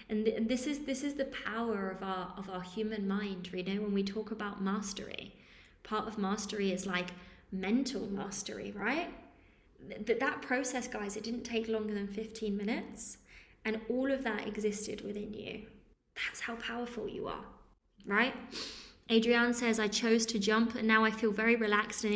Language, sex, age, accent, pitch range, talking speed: English, female, 20-39, British, 210-250 Hz, 180 wpm